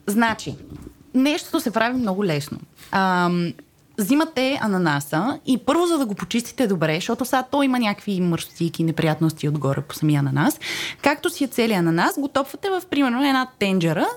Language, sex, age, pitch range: Bulgarian, female, 20-39, 175-290 Hz